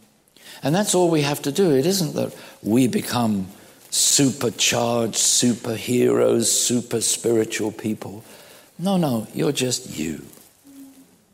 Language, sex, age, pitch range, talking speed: English, male, 60-79, 105-145 Hz, 115 wpm